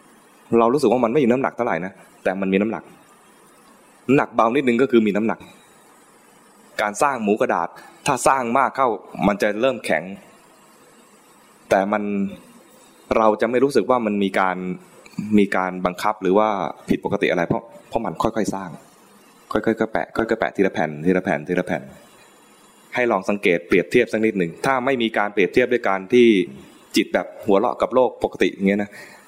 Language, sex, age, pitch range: English, male, 20-39, 95-115 Hz